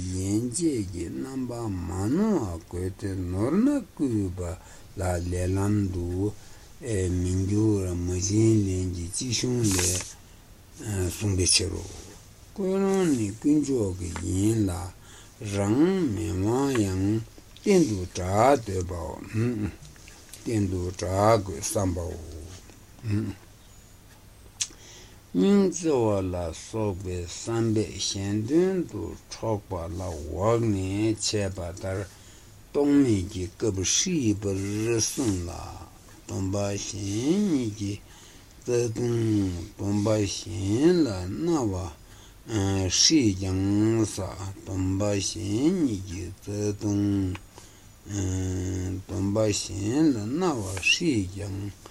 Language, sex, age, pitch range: Italian, male, 60-79, 95-110 Hz